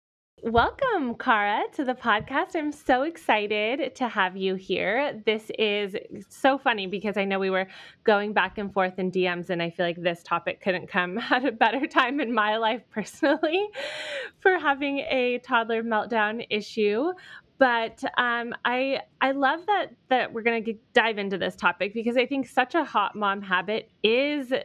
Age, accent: 20-39, American